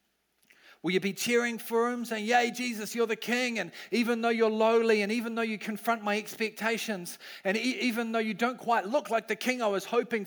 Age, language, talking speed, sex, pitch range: 40-59, English, 215 wpm, male, 165-220 Hz